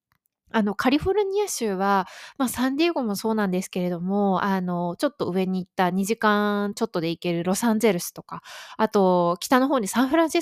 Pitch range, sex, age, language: 185-255 Hz, female, 20-39, Japanese